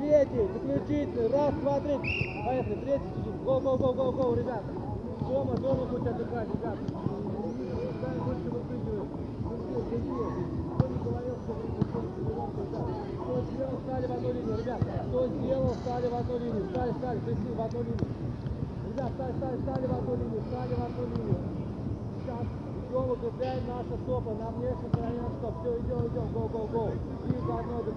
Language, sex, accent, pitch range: Russian, male, native, 110-130 Hz